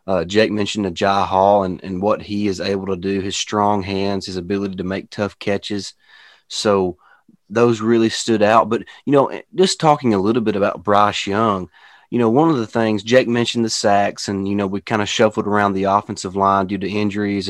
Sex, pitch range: male, 100-115 Hz